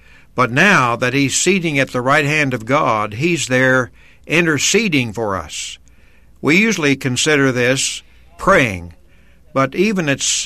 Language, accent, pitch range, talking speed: English, American, 90-150 Hz, 140 wpm